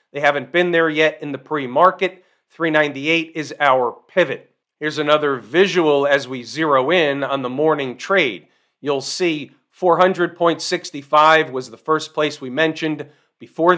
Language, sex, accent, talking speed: English, male, American, 145 wpm